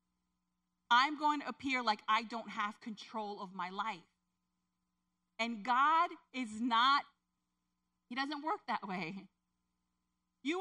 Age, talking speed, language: 40-59, 125 wpm, English